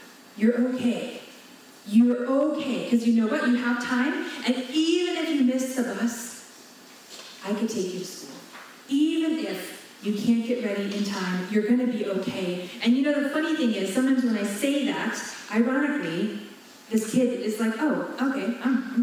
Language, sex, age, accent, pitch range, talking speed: English, female, 30-49, American, 220-275 Hz, 185 wpm